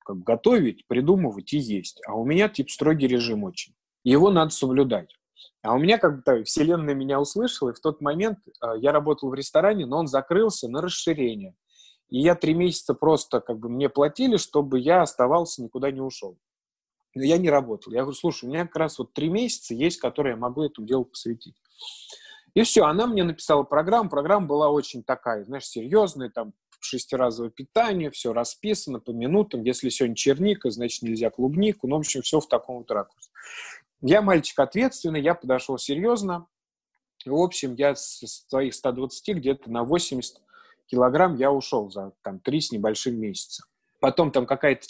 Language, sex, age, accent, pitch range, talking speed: Russian, male, 20-39, native, 125-175 Hz, 180 wpm